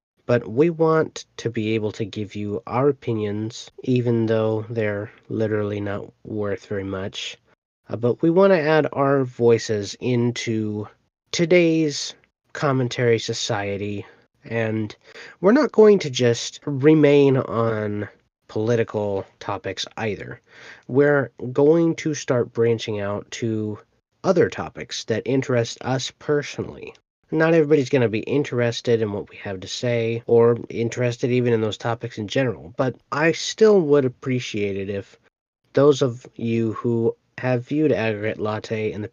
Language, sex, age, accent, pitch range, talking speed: English, male, 30-49, American, 105-130 Hz, 140 wpm